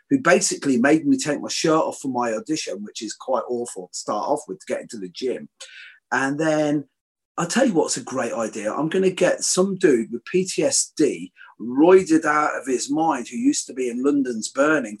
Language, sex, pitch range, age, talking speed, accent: English, male, 130-185 Hz, 40-59, 215 wpm, British